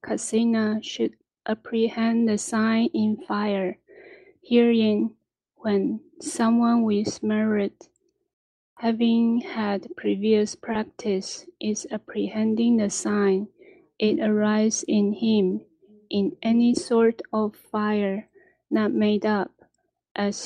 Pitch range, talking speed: 205-235 Hz, 95 wpm